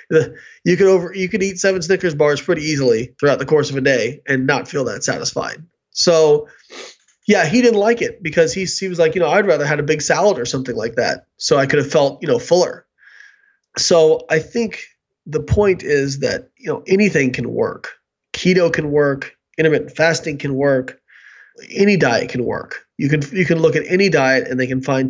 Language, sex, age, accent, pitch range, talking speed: English, male, 30-49, American, 140-190 Hz, 210 wpm